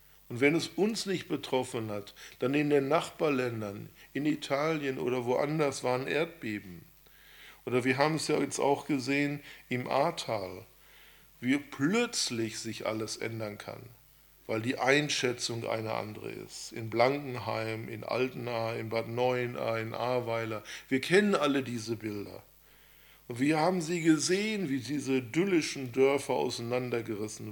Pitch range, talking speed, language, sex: 115-150 Hz, 135 wpm, German, male